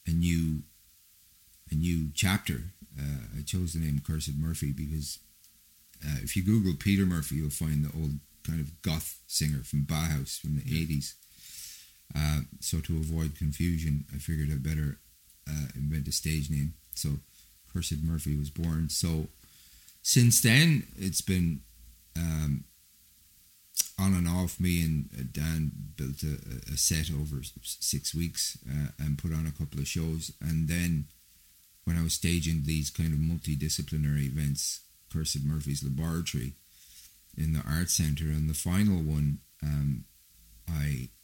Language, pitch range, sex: English, 75-85 Hz, male